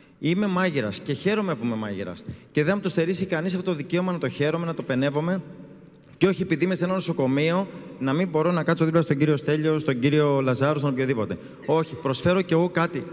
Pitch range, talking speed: 150-195 Hz, 220 wpm